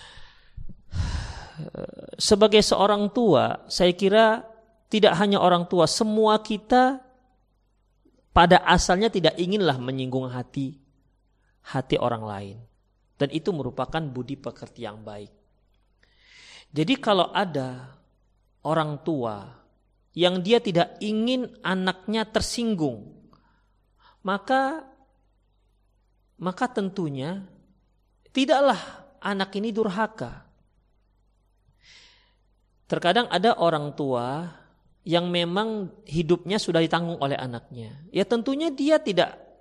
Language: Indonesian